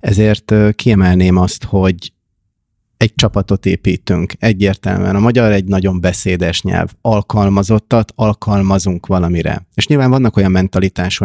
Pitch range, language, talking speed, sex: 95-105 Hz, Hungarian, 115 wpm, male